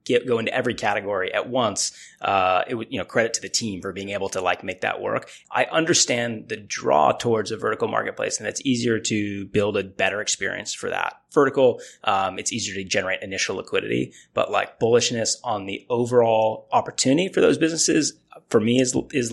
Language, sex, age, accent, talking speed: English, male, 30-49, American, 200 wpm